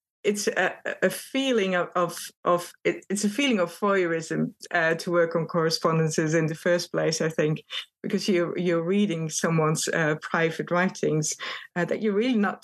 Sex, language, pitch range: female, English, 165-205 Hz